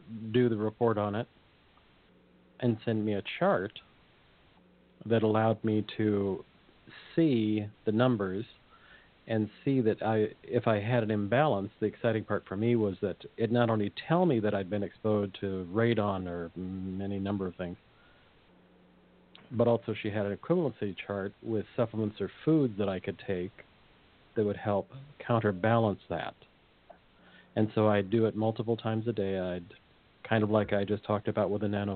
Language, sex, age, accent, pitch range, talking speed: English, male, 50-69, American, 95-110 Hz, 165 wpm